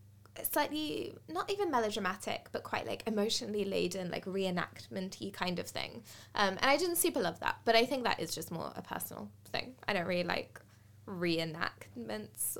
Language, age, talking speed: English, 20-39, 170 wpm